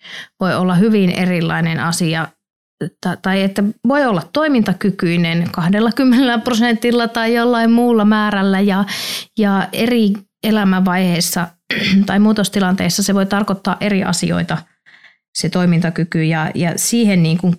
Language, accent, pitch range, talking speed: Finnish, native, 175-210 Hz, 110 wpm